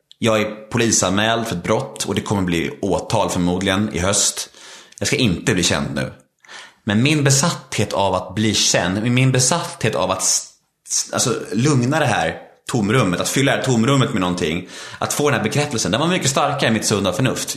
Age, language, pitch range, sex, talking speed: 30-49, Swedish, 100-140 Hz, male, 200 wpm